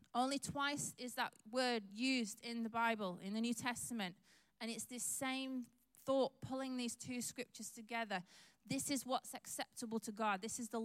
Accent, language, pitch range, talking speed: British, English, 195-245 Hz, 175 wpm